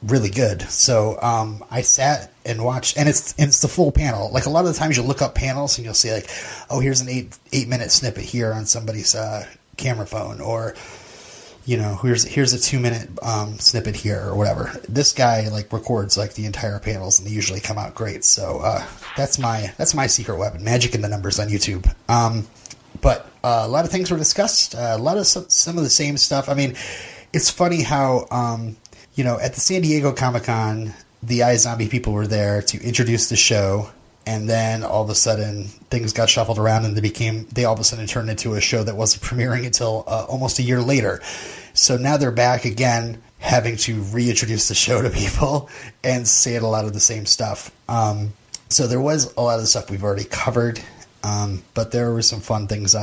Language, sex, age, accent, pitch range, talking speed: English, male, 30-49, American, 105-125 Hz, 220 wpm